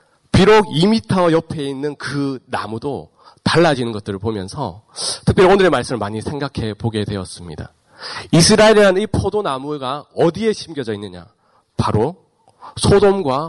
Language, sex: Korean, male